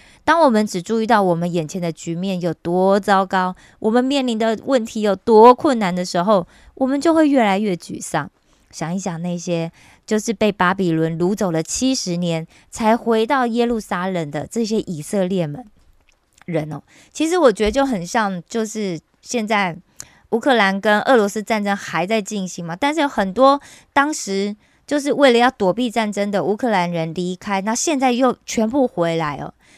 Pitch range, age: 175-240 Hz, 20-39